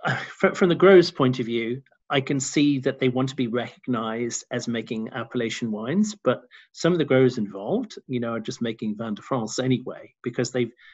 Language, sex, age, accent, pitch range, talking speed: English, male, 40-59, British, 115-135 Hz, 195 wpm